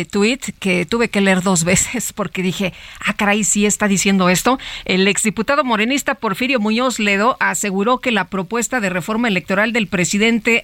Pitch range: 190-245 Hz